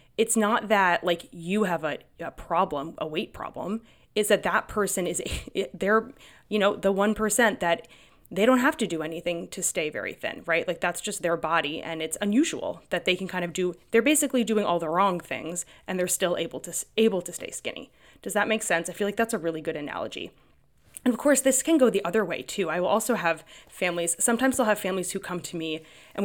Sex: female